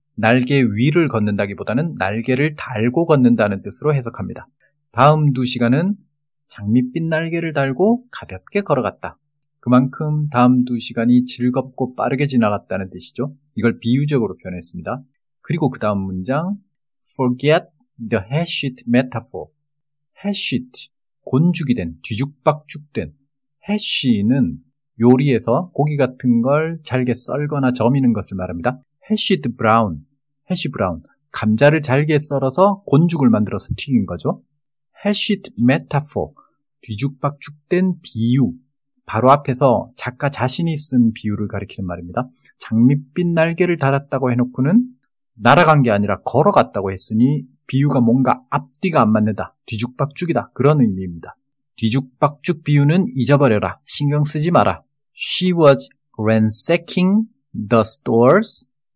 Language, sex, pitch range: Korean, male, 120-150 Hz